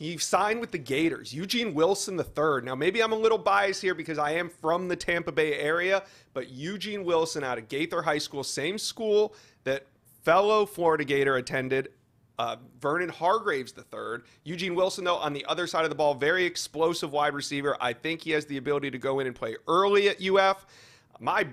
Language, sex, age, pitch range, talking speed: English, male, 30-49, 140-195 Hz, 200 wpm